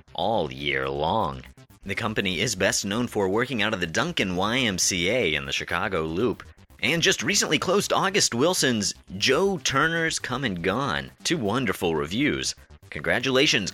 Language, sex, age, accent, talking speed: English, male, 30-49, American, 150 wpm